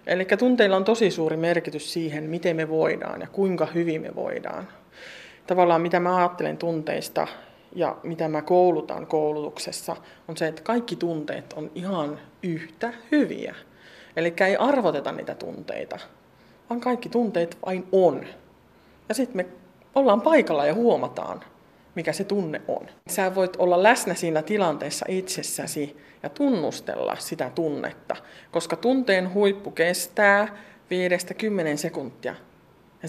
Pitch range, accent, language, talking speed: 165-205 Hz, native, Finnish, 135 wpm